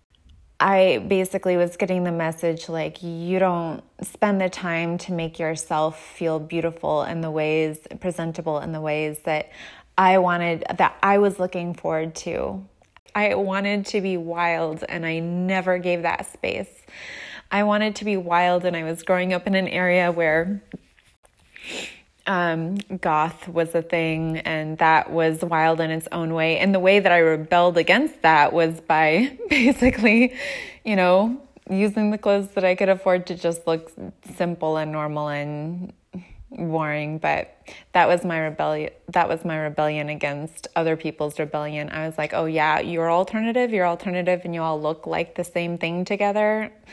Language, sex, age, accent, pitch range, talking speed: English, female, 20-39, American, 160-185 Hz, 160 wpm